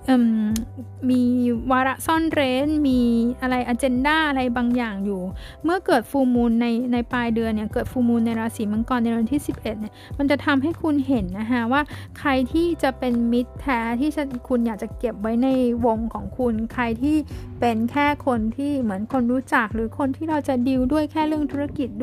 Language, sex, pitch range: Thai, female, 225-275 Hz